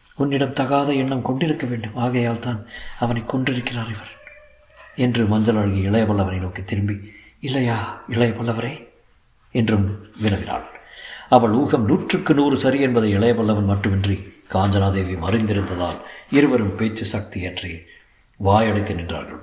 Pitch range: 105-155 Hz